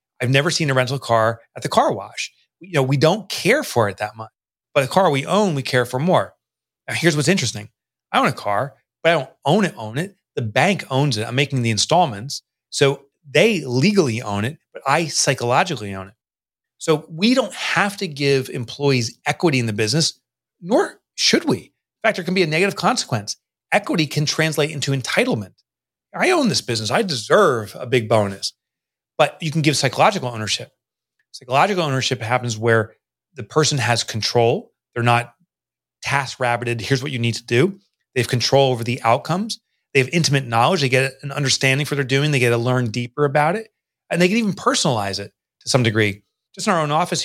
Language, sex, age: English, male, 30-49